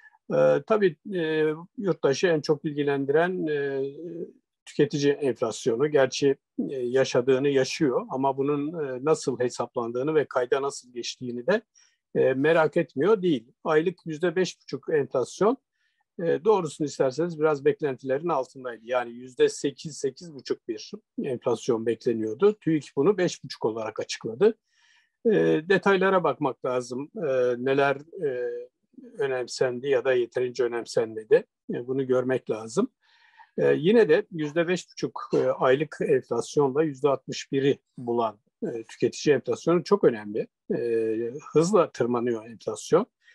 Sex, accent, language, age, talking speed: male, native, Turkish, 50-69, 100 wpm